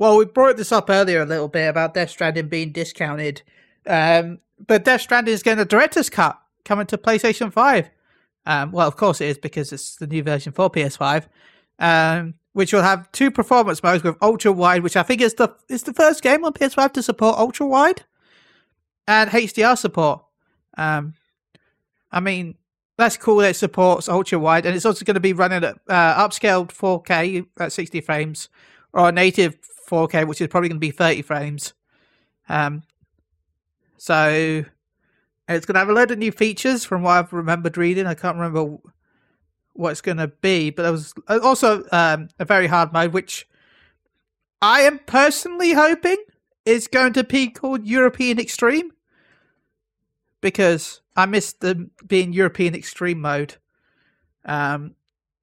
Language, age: English, 30-49